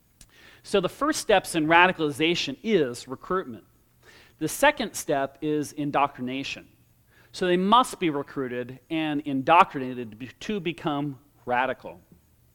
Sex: male